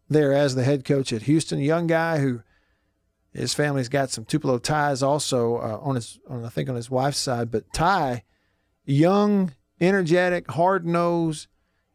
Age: 50-69